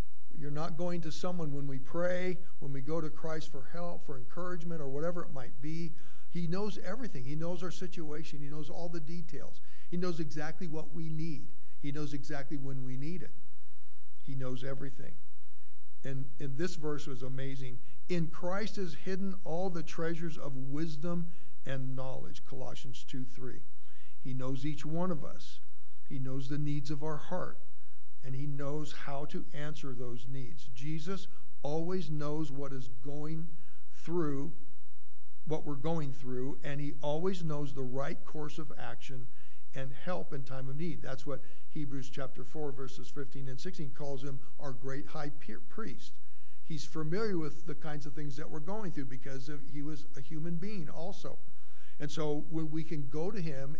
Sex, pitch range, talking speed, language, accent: male, 135-165 Hz, 180 wpm, English, American